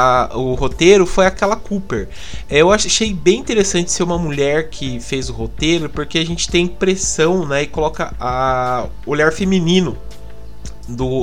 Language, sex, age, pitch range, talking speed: Portuguese, male, 20-39, 130-170 Hz, 145 wpm